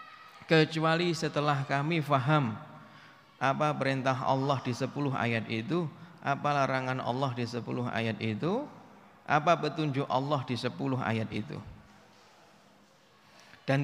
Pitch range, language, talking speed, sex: 130-170 Hz, Indonesian, 115 wpm, male